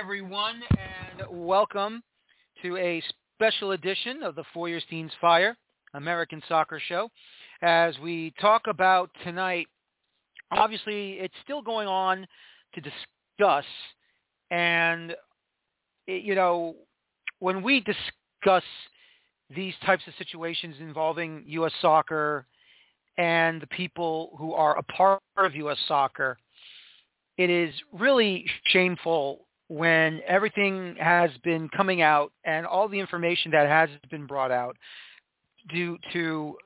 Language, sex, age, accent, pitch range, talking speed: English, male, 40-59, American, 155-185 Hz, 115 wpm